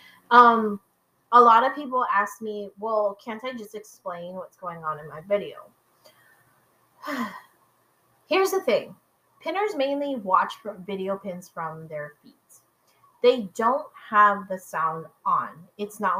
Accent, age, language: American, 20-39, English